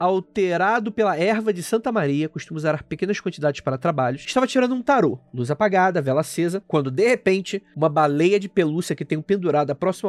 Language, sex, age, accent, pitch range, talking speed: Portuguese, male, 20-39, Brazilian, 155-215 Hz, 185 wpm